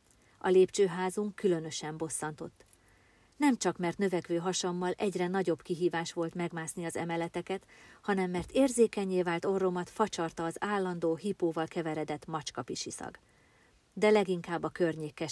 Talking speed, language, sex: 120 wpm, Hungarian, female